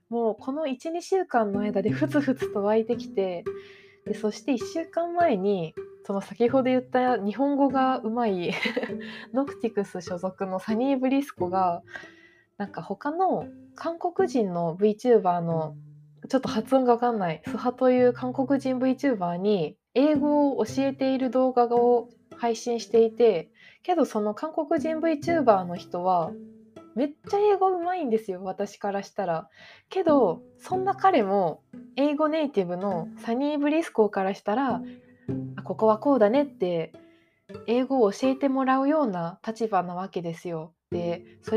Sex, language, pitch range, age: female, Japanese, 195-280 Hz, 20-39